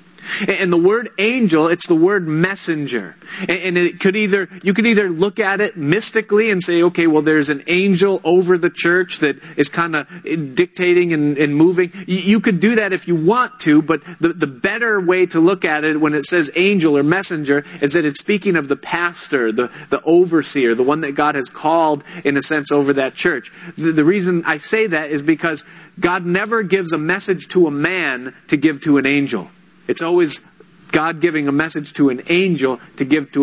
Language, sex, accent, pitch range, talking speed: English, male, American, 140-180 Hz, 205 wpm